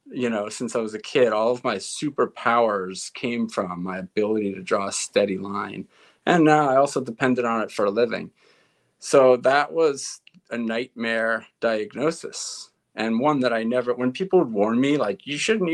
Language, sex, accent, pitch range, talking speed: English, male, American, 105-145 Hz, 190 wpm